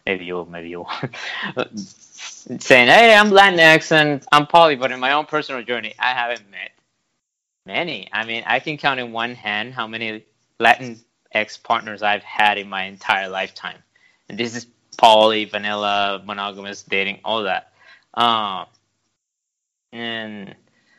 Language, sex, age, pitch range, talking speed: English, male, 20-39, 110-145 Hz, 145 wpm